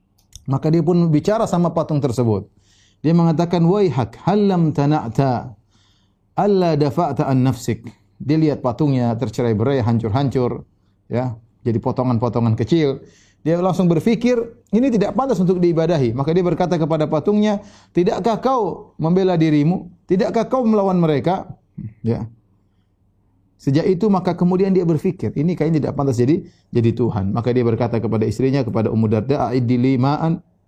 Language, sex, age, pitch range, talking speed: Indonesian, male, 30-49, 115-170 Hz, 140 wpm